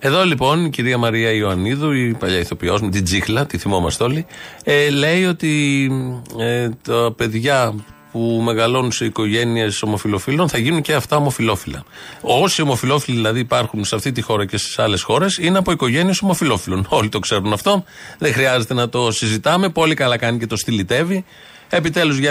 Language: Greek